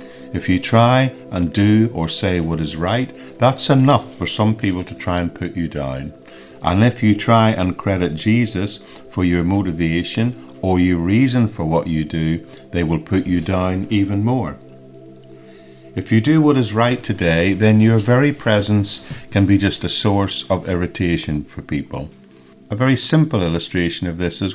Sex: male